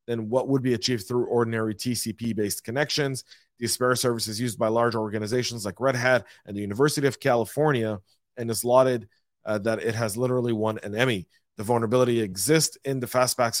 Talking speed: 185 wpm